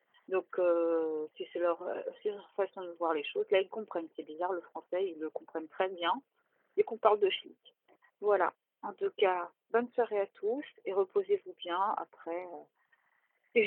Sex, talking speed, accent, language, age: female, 200 wpm, French, French, 40-59